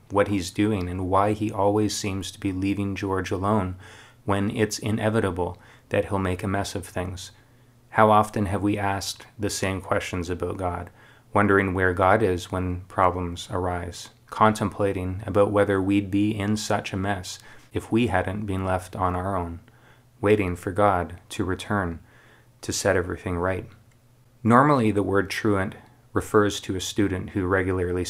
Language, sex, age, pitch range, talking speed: English, male, 30-49, 95-110 Hz, 160 wpm